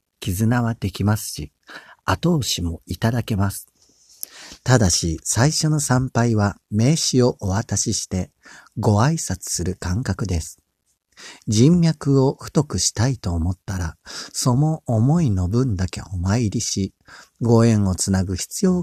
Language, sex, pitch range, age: Japanese, male, 95-135 Hz, 50-69